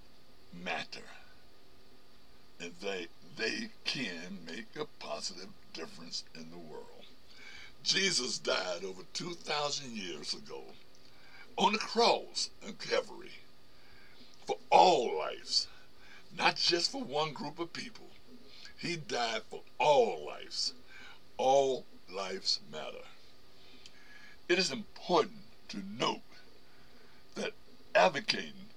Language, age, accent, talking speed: English, 60-79, American, 100 wpm